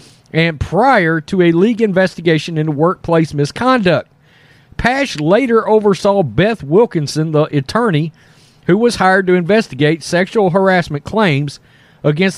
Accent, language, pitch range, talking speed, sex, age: American, English, 145-195 Hz, 120 wpm, male, 40-59